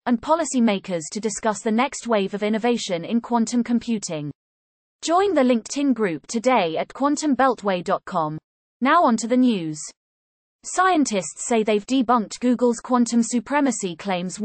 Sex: female